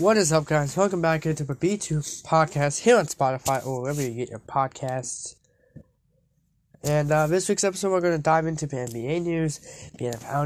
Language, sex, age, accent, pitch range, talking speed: English, male, 20-39, American, 135-170 Hz, 190 wpm